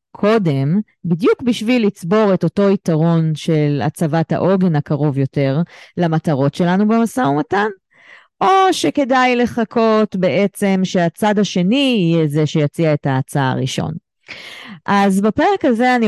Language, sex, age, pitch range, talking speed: Hebrew, female, 30-49, 160-215 Hz, 120 wpm